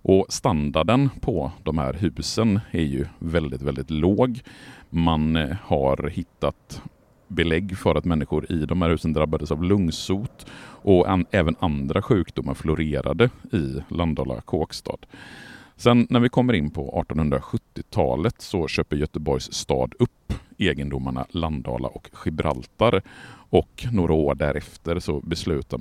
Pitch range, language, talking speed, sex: 70-90 Hz, Swedish, 130 wpm, male